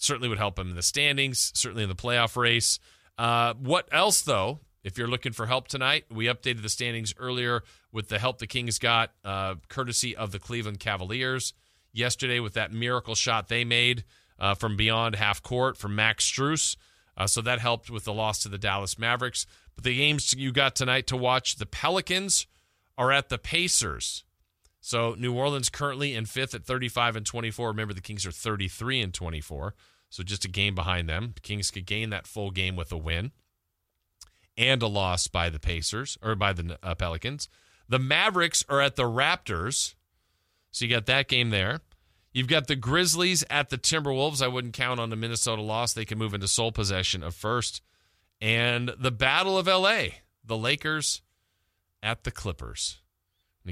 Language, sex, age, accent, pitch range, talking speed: English, male, 40-59, American, 95-125 Hz, 185 wpm